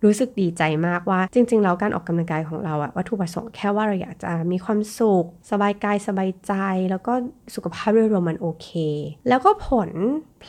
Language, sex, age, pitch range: Thai, female, 20-39, 170-225 Hz